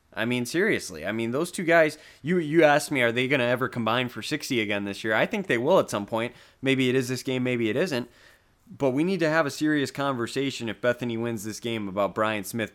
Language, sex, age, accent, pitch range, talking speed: English, male, 20-39, American, 105-125 Hz, 255 wpm